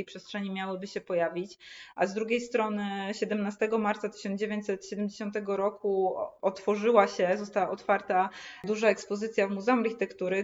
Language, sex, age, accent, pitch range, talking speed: Polish, female, 20-39, native, 185-215 Hz, 120 wpm